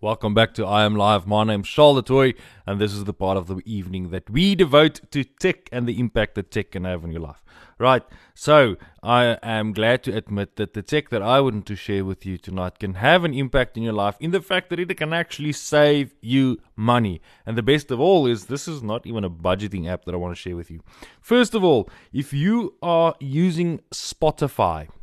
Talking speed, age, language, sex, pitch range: 235 wpm, 30-49, English, male, 100-130 Hz